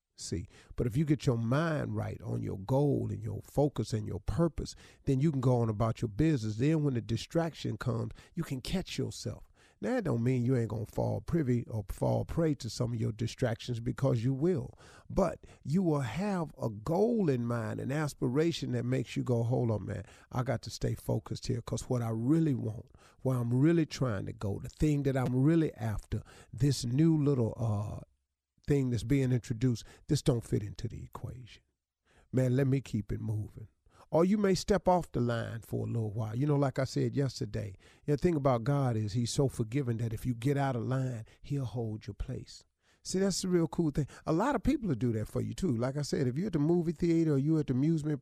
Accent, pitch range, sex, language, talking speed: American, 115-155 Hz, male, English, 225 wpm